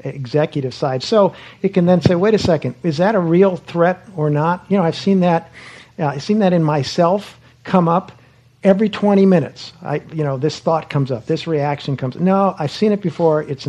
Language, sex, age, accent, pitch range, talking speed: English, male, 50-69, American, 135-170 Hz, 220 wpm